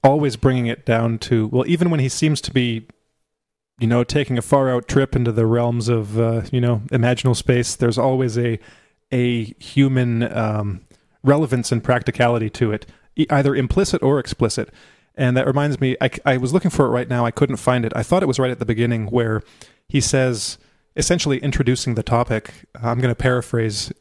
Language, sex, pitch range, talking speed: English, male, 120-145 Hz, 195 wpm